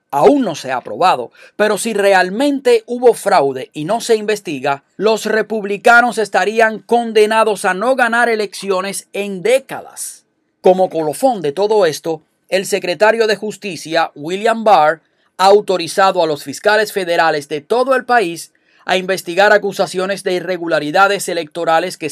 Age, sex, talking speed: 30-49, male, 140 wpm